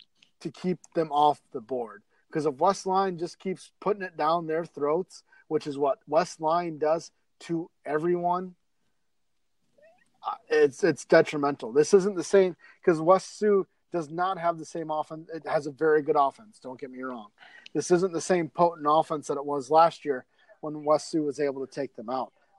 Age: 30-49